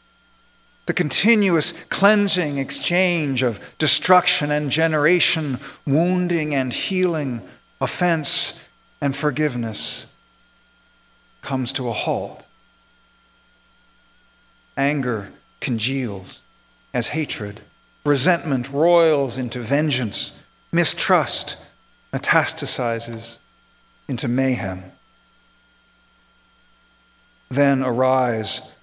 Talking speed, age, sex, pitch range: 65 wpm, 50-69, male, 130-180 Hz